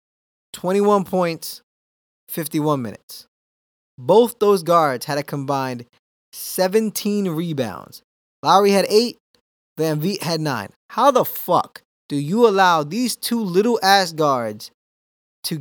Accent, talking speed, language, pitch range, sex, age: American, 120 wpm, English, 140-210 Hz, male, 20-39